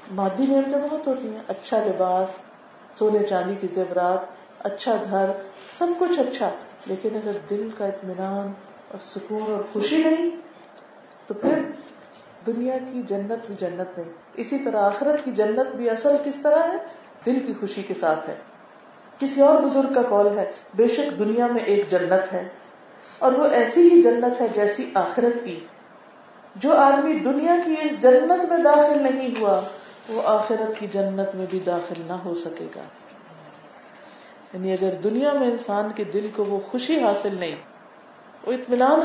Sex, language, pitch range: female, Urdu, 195-275 Hz